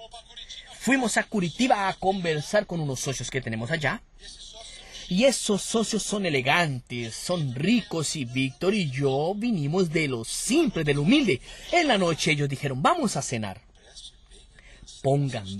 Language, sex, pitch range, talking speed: Portuguese, male, 135-195 Hz, 145 wpm